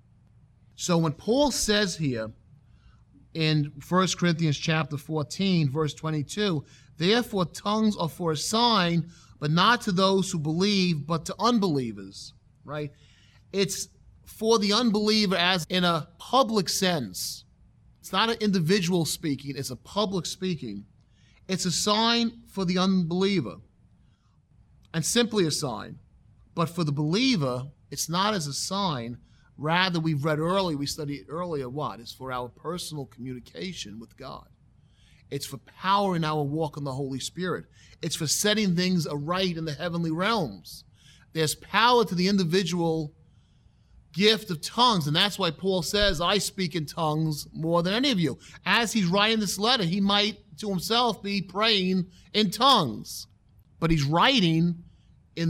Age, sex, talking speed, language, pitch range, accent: 30-49, male, 150 wpm, English, 140-195 Hz, American